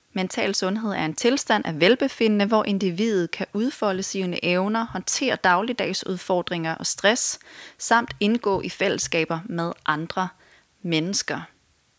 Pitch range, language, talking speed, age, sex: 170-210 Hz, Danish, 120 wpm, 30-49, female